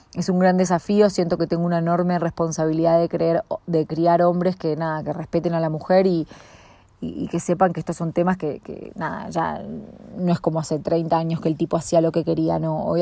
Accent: Argentinian